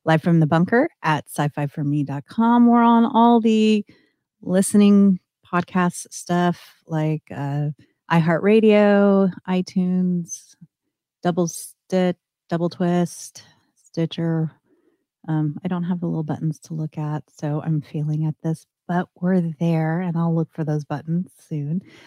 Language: English